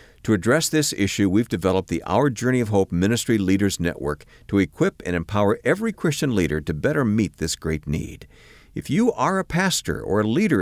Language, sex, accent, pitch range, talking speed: English, male, American, 90-135 Hz, 200 wpm